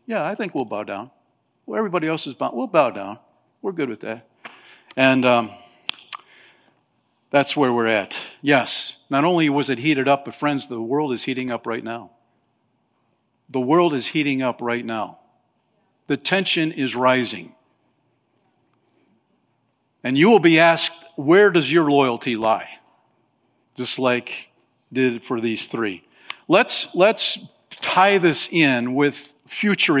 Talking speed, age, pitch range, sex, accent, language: 150 wpm, 50-69, 120-150 Hz, male, American, English